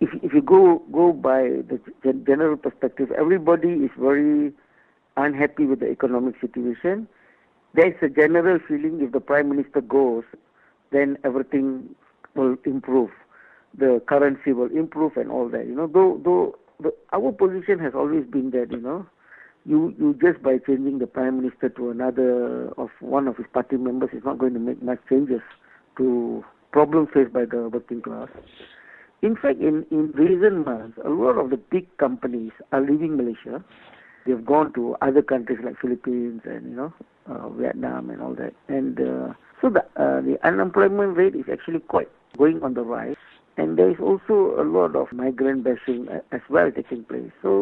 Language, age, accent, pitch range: English, 50-69, Indian, 125-170 Hz